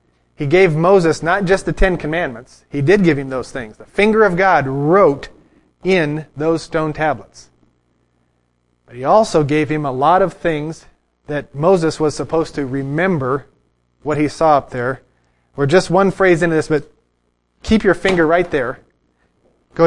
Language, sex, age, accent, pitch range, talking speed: English, male, 30-49, American, 140-180 Hz, 170 wpm